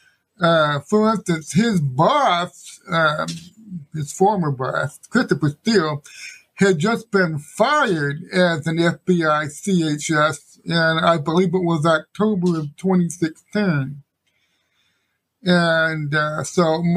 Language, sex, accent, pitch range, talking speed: English, male, American, 160-200 Hz, 95 wpm